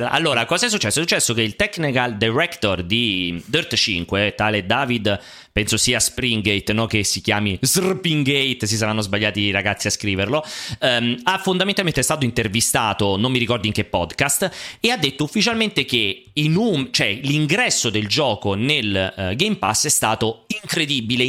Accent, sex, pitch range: native, male, 115-155 Hz